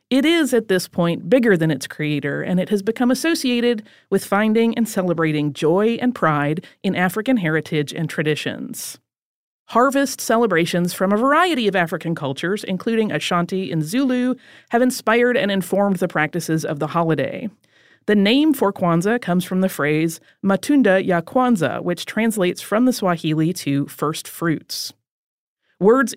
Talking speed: 155 wpm